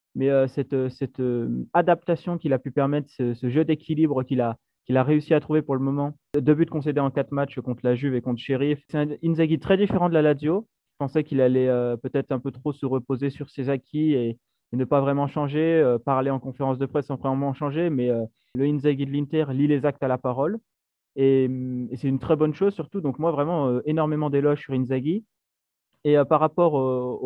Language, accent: French, French